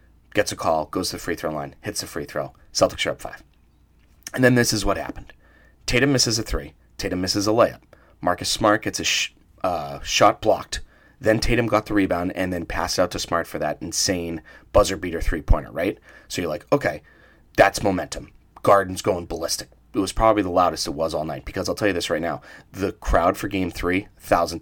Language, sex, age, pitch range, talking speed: English, male, 30-49, 85-110 Hz, 215 wpm